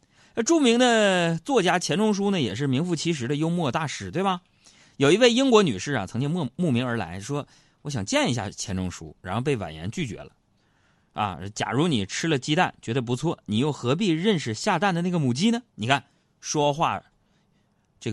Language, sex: Chinese, male